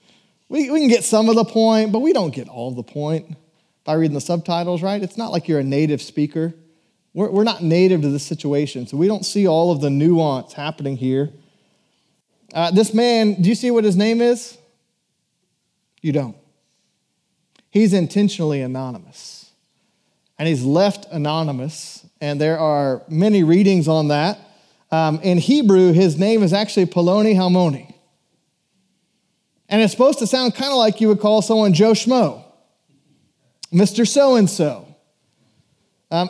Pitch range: 160-220 Hz